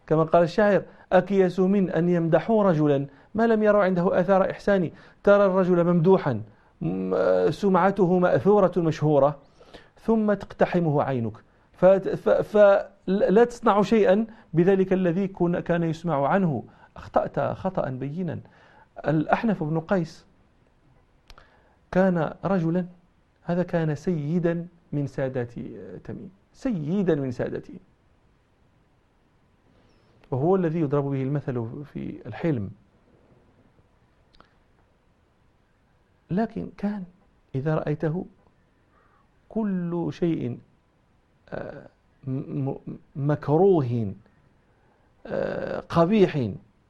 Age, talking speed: 40-59, 80 wpm